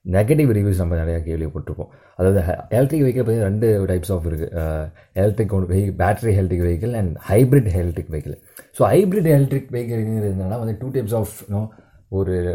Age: 20-39